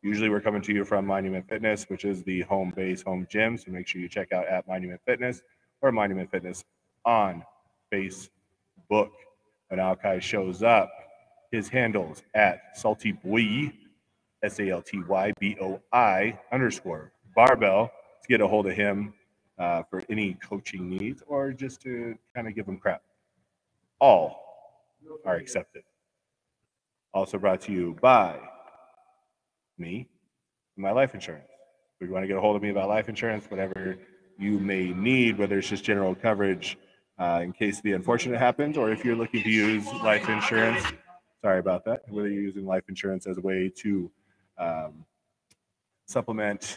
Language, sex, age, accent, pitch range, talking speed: English, male, 40-59, American, 95-110 Hz, 155 wpm